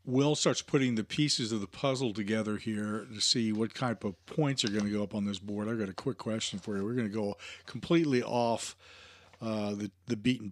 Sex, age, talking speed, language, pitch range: male, 40-59, 235 wpm, English, 105-140 Hz